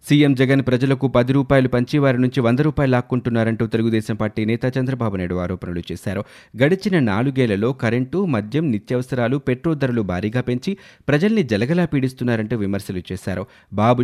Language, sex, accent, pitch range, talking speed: Telugu, male, native, 110-135 Hz, 140 wpm